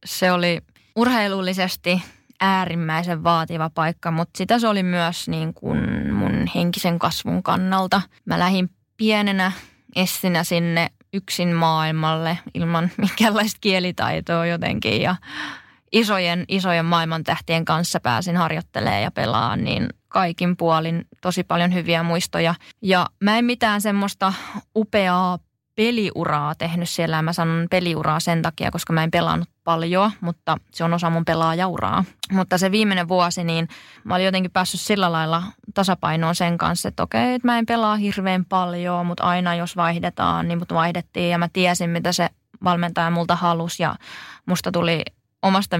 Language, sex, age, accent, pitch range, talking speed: Finnish, female, 20-39, native, 165-185 Hz, 145 wpm